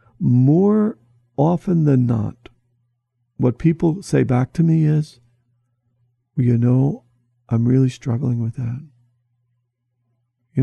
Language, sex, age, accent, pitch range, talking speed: English, male, 50-69, American, 120-135 Hz, 105 wpm